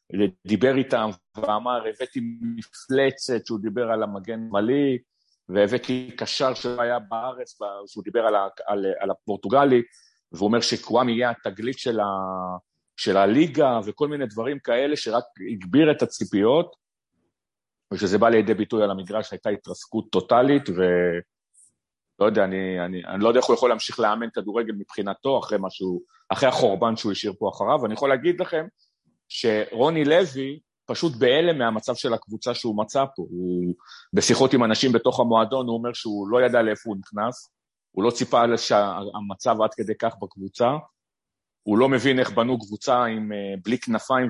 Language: Hebrew